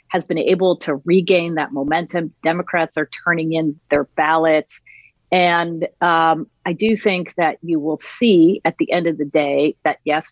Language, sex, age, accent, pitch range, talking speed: English, female, 40-59, American, 155-210 Hz, 175 wpm